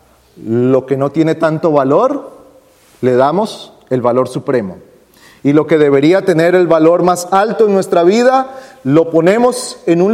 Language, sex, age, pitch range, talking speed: Spanish, male, 40-59, 140-210 Hz, 160 wpm